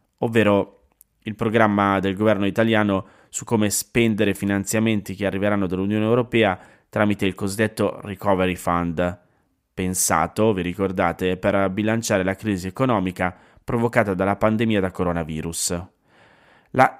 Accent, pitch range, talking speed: native, 95-115 Hz, 115 wpm